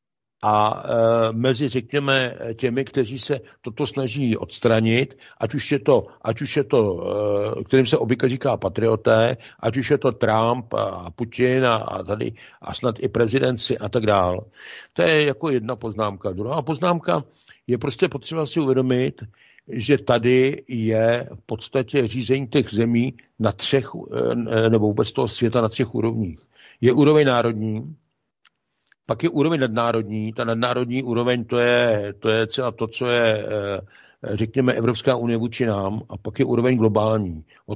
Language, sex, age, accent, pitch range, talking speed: Czech, male, 60-79, native, 110-135 Hz, 160 wpm